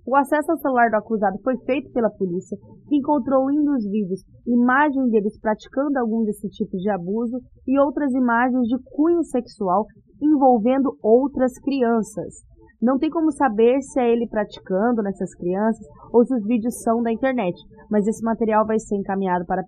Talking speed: 175 wpm